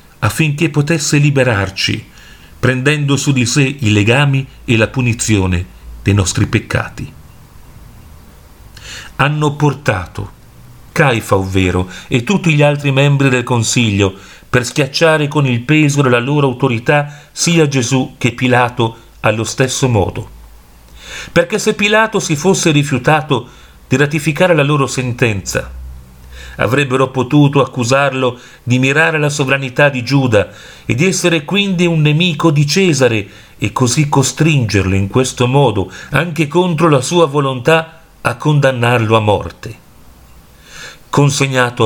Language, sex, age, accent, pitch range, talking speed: Italian, male, 40-59, native, 115-150 Hz, 120 wpm